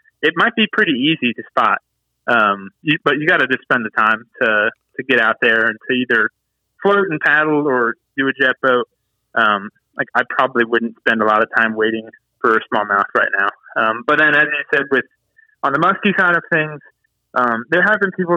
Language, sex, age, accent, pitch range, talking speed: English, male, 20-39, American, 115-160 Hz, 215 wpm